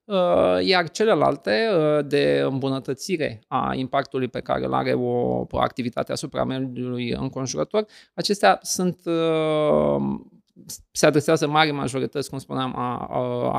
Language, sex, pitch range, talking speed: Romanian, male, 120-155 Hz, 120 wpm